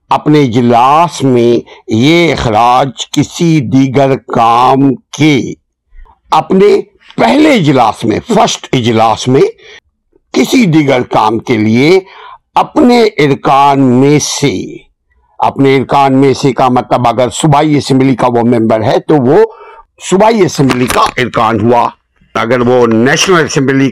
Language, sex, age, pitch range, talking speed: Urdu, male, 60-79, 115-165 Hz, 125 wpm